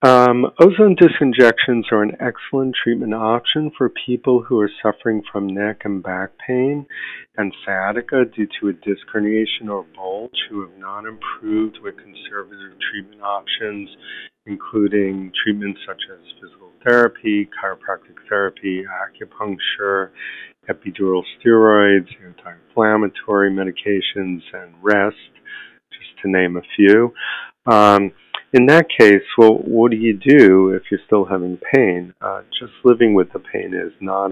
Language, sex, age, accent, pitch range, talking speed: English, male, 50-69, American, 95-115 Hz, 135 wpm